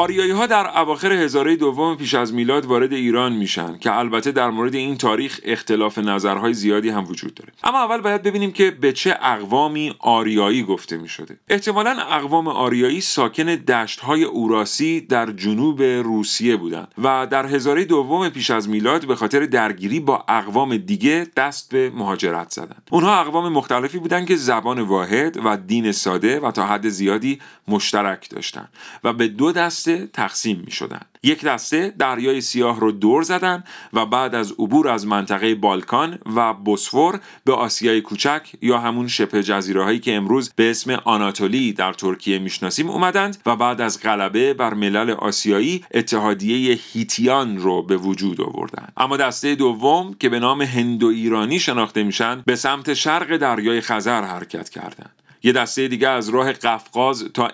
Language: Persian